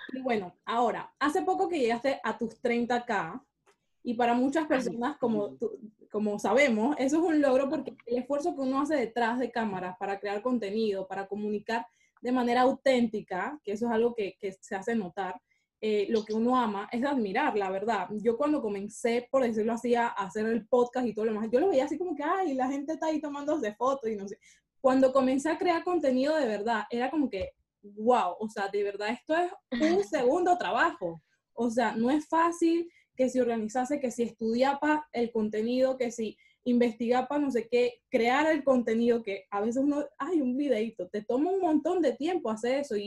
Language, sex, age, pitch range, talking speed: Spanish, female, 20-39, 220-275 Hz, 200 wpm